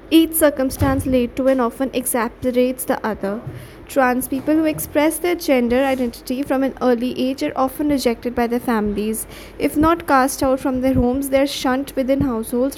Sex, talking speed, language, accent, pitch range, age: female, 180 wpm, English, Indian, 250-295 Hz, 20-39